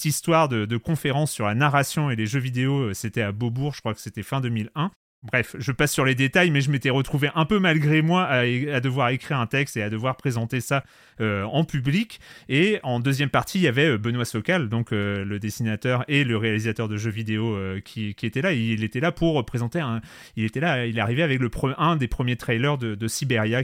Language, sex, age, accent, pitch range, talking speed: French, male, 30-49, French, 120-165 Hz, 240 wpm